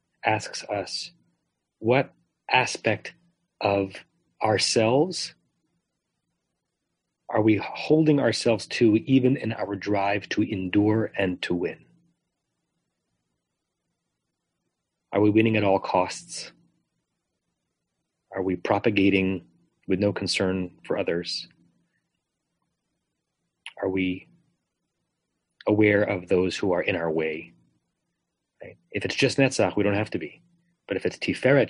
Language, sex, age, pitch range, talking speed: English, male, 30-49, 95-115 Hz, 110 wpm